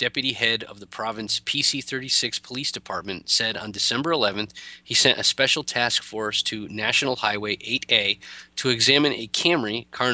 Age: 20-39